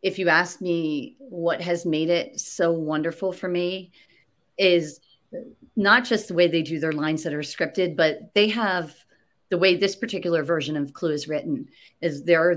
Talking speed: 185 wpm